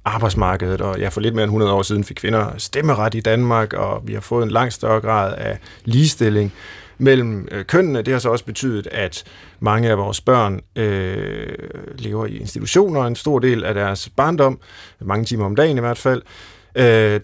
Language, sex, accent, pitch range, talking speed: Danish, male, native, 105-135 Hz, 190 wpm